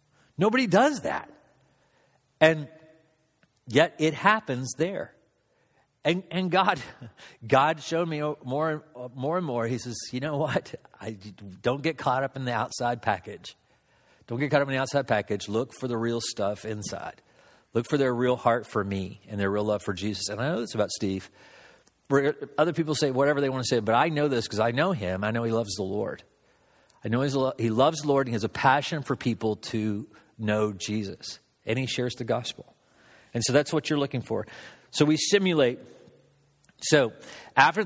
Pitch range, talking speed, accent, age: 110-150 Hz, 195 wpm, American, 50-69